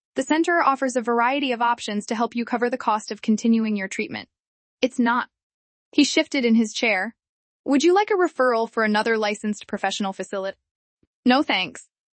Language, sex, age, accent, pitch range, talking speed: English, female, 10-29, American, 210-260 Hz, 180 wpm